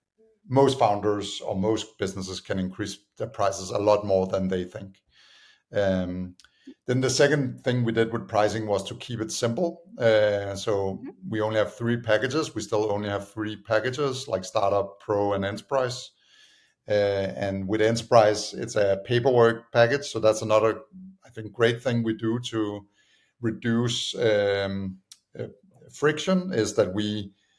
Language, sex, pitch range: English, male, 100-120 Hz